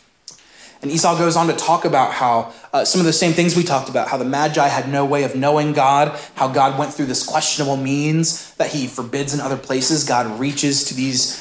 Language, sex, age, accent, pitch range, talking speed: English, male, 20-39, American, 135-165 Hz, 225 wpm